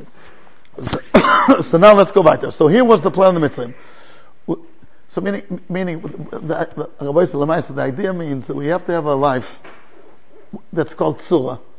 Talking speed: 165 wpm